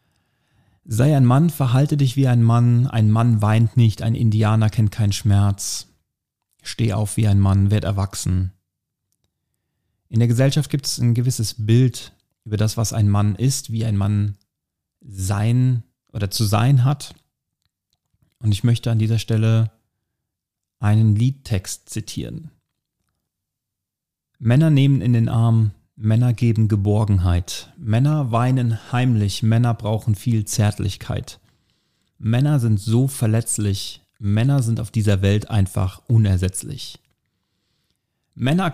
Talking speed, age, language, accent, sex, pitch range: 125 wpm, 40-59, German, German, male, 105-125 Hz